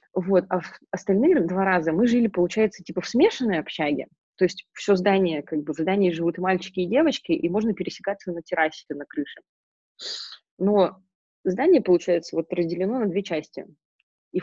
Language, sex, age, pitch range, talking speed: Russian, female, 20-39, 160-200 Hz, 175 wpm